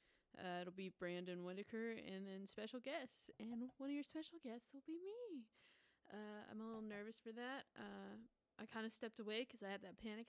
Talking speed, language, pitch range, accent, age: 210 wpm, English, 185-230 Hz, American, 20-39